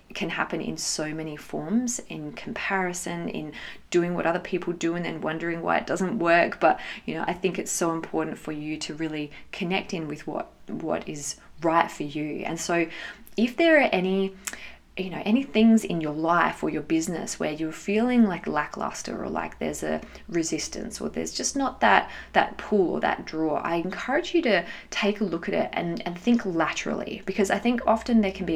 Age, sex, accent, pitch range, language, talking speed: 20-39, female, Australian, 165-225 Hz, English, 205 wpm